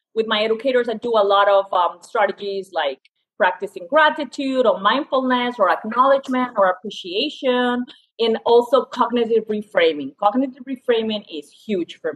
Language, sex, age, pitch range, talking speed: English, female, 30-49, 200-270 Hz, 140 wpm